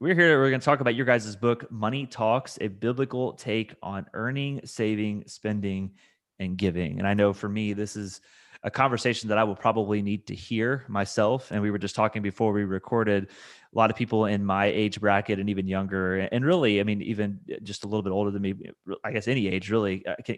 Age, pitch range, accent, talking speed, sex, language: 30-49, 100-110 Hz, American, 220 wpm, male, English